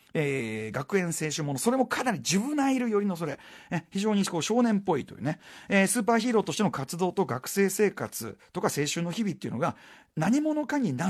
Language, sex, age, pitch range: Japanese, male, 40-59, 135-220 Hz